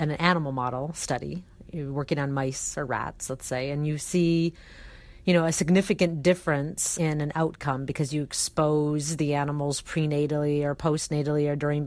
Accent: American